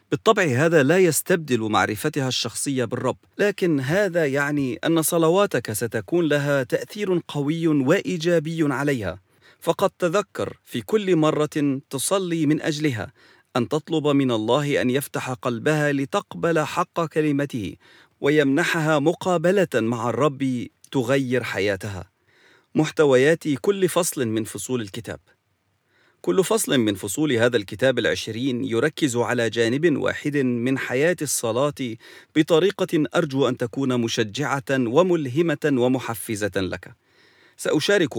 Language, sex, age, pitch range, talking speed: English, male, 40-59, 120-160 Hz, 110 wpm